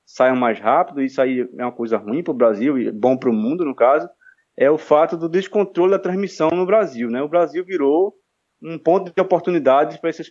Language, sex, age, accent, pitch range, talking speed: Portuguese, male, 20-39, Brazilian, 130-190 Hz, 220 wpm